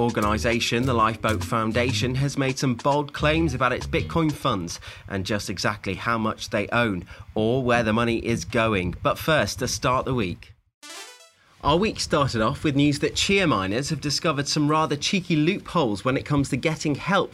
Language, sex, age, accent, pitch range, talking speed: English, male, 30-49, British, 110-150 Hz, 185 wpm